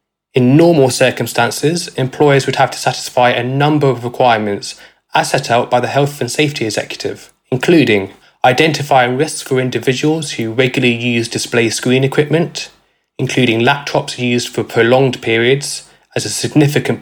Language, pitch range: English, 115-140 Hz